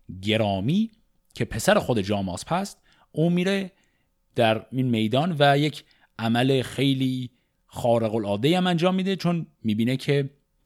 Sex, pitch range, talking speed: male, 110-150 Hz, 130 wpm